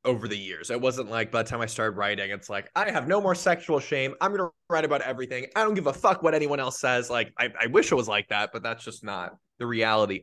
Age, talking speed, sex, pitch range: 20-39, 285 wpm, male, 105-140 Hz